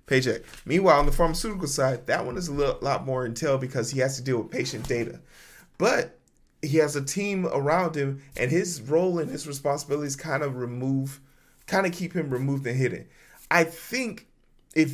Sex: male